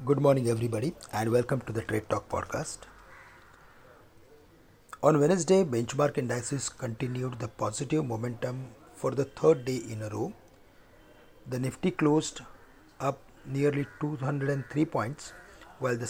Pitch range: 120-150 Hz